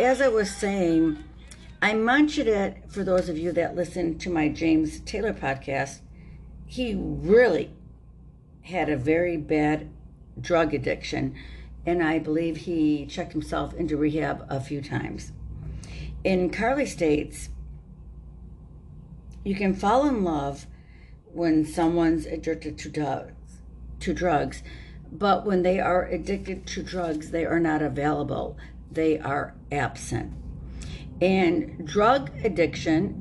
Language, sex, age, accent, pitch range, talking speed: English, female, 60-79, American, 140-175 Hz, 120 wpm